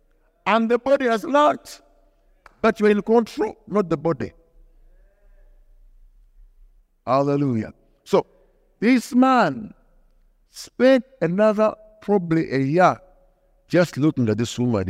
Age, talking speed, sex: 60-79, 105 wpm, male